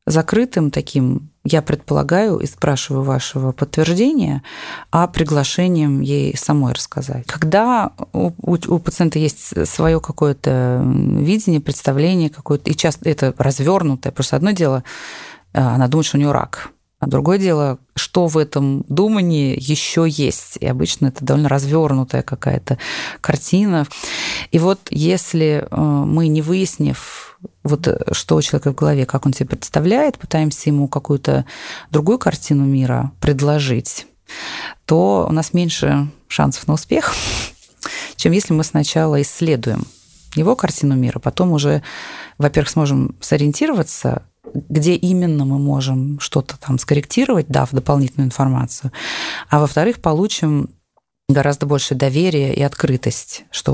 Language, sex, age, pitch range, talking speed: Russian, female, 30-49, 135-160 Hz, 130 wpm